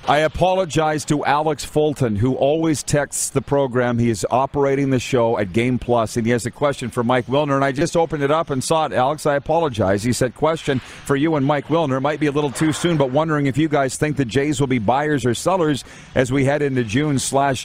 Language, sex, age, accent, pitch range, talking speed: English, male, 40-59, American, 120-150 Hz, 245 wpm